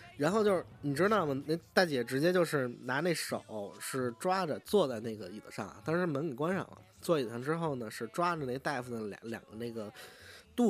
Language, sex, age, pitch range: Chinese, male, 20-39, 130-185 Hz